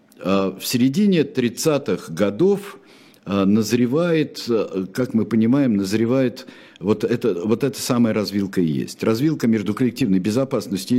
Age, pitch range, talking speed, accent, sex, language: 50-69, 95-120 Hz, 115 wpm, native, male, Russian